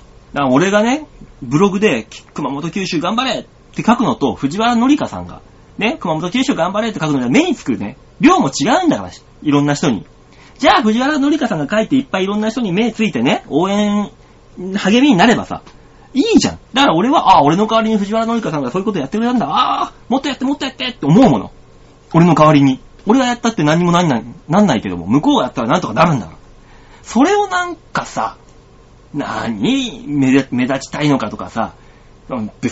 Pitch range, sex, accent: 155-255 Hz, male, native